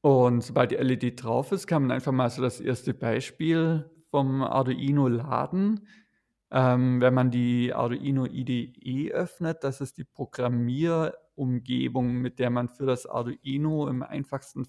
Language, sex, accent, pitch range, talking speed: German, male, German, 125-145 Hz, 145 wpm